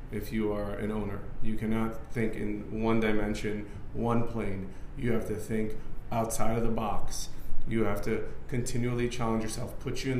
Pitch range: 110-125 Hz